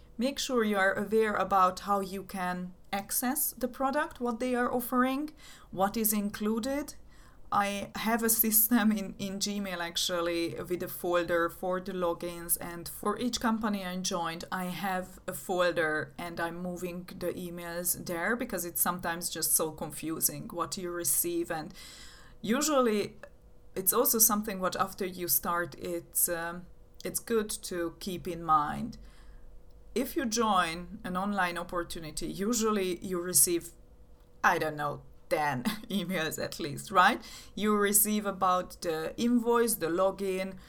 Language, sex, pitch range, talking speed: English, female, 175-215 Hz, 145 wpm